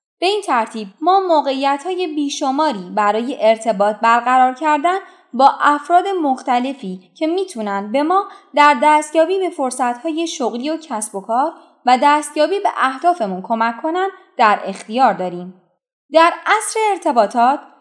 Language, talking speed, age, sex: Persian, 135 wpm, 20-39, female